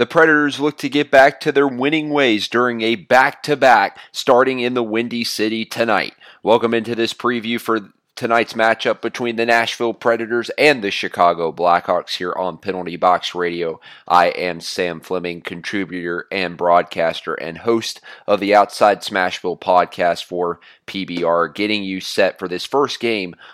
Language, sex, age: English, male, 30-49